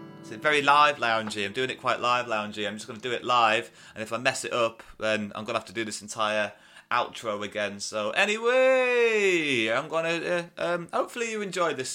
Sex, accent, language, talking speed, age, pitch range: male, British, English, 215 wpm, 30-49, 105-165 Hz